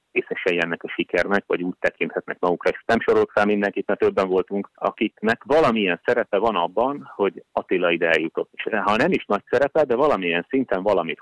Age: 30-49